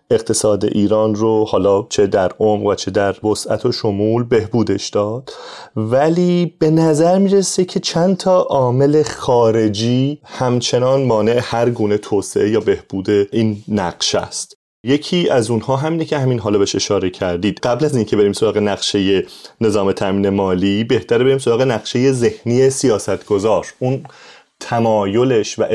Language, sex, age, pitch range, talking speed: Persian, male, 30-49, 105-135 Hz, 145 wpm